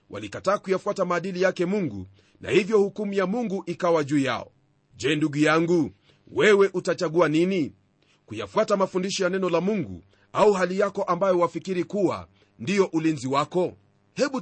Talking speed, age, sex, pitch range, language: 145 wpm, 40-59, male, 140-195 Hz, Swahili